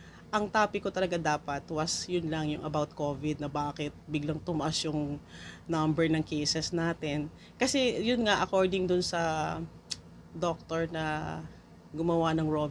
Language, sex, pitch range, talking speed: Filipino, female, 155-195 Hz, 145 wpm